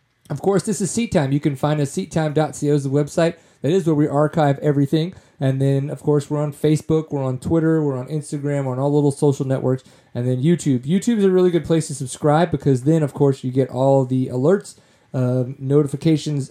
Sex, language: male, English